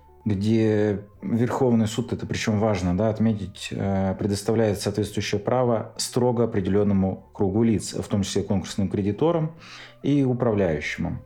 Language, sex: Russian, male